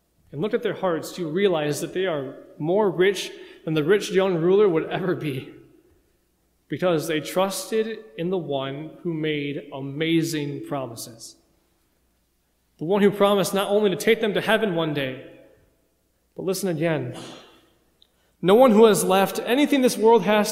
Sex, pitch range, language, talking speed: male, 155-200 Hz, English, 160 wpm